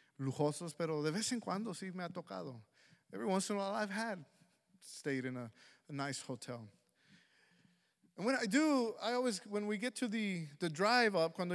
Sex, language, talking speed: male, English, 195 wpm